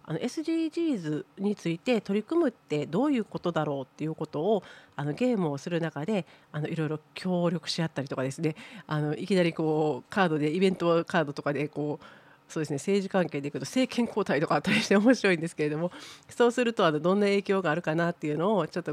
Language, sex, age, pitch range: Japanese, female, 40-59, 155-205 Hz